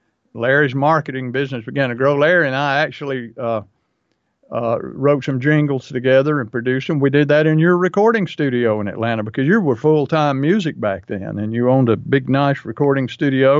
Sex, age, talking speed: male, 50-69, 190 wpm